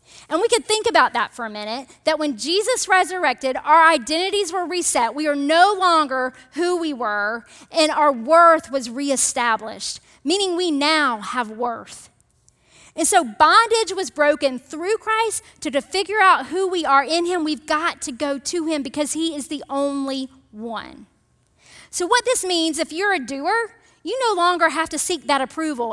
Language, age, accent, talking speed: English, 40-59, American, 180 wpm